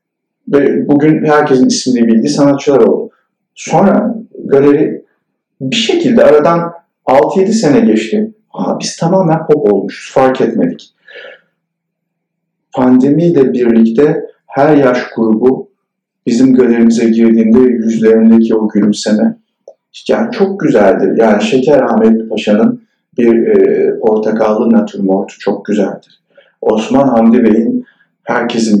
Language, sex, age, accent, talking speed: Turkish, male, 50-69, native, 100 wpm